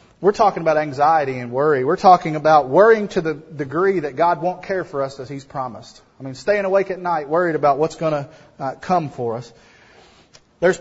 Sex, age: male, 30-49